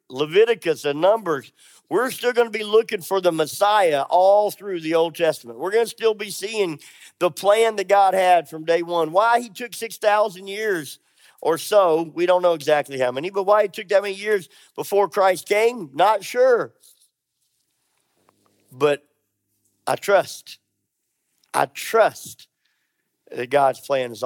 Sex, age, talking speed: male, 50-69, 160 wpm